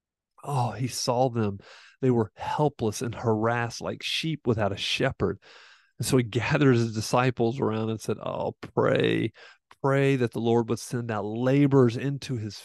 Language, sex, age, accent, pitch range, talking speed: English, male, 40-59, American, 110-135 Hz, 165 wpm